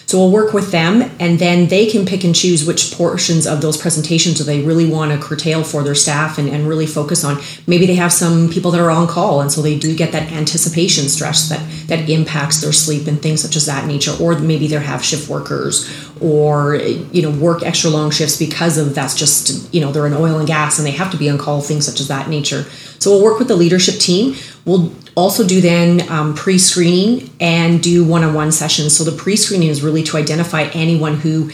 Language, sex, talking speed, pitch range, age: English, female, 230 wpm, 155-180 Hz, 30-49